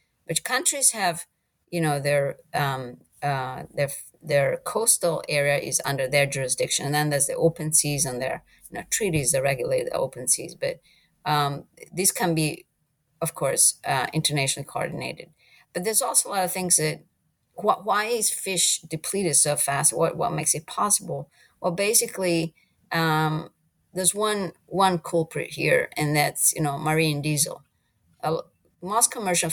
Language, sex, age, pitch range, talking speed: English, female, 30-49, 145-175 Hz, 160 wpm